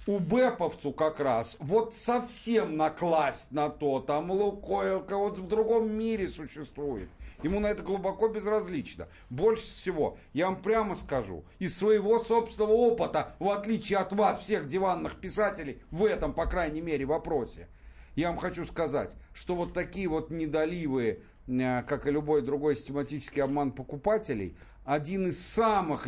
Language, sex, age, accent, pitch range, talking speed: Russian, male, 50-69, native, 145-210 Hz, 145 wpm